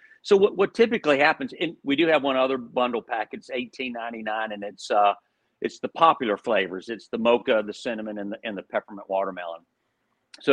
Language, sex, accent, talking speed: English, male, American, 195 wpm